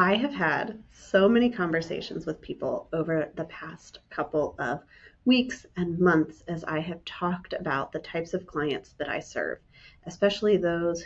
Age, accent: 30-49, American